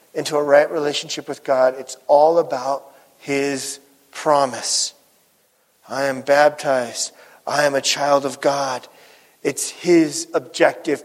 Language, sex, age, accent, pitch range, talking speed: English, male, 40-59, American, 140-170 Hz, 125 wpm